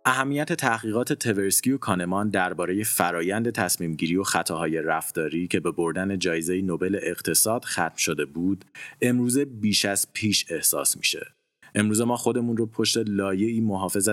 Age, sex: 30-49, male